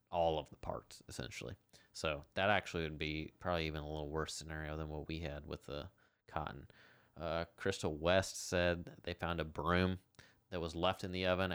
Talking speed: 190 wpm